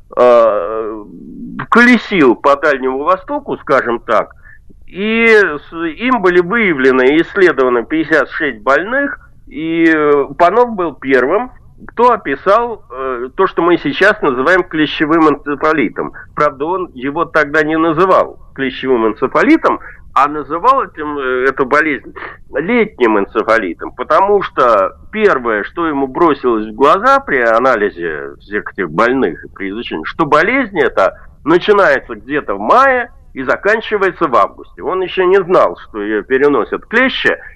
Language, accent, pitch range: Russian, native, 140-230 Hz